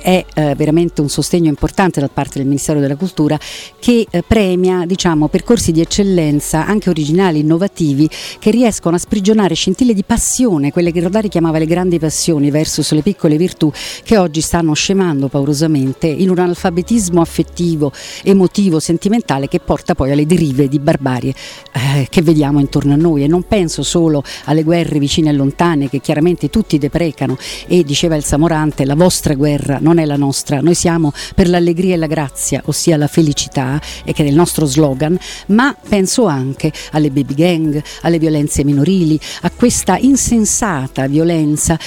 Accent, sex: native, female